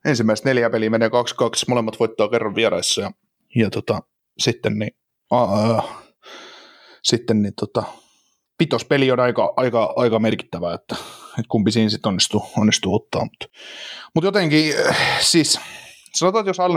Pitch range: 110-130 Hz